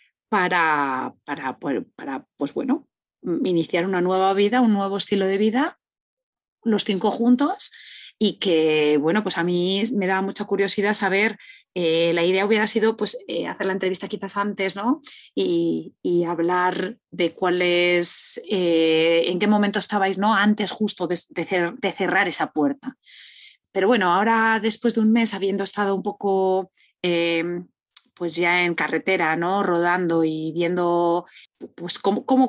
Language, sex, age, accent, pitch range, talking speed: Spanish, female, 30-49, Spanish, 170-215 Hz, 155 wpm